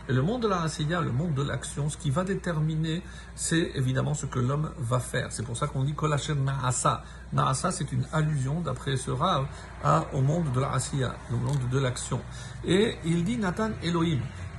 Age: 50-69